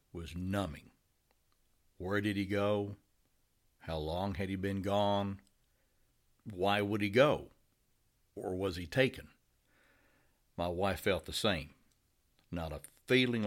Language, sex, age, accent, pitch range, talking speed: English, male, 60-79, American, 80-105 Hz, 125 wpm